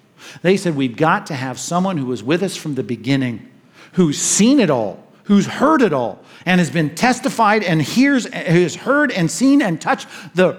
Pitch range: 150-205 Hz